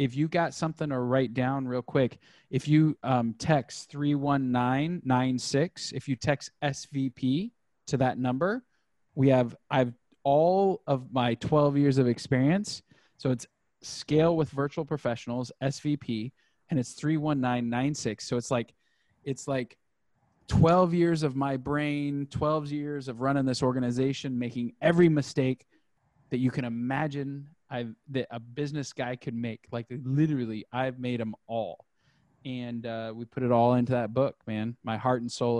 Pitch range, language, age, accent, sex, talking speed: 125-150 Hz, English, 10-29, American, male, 155 wpm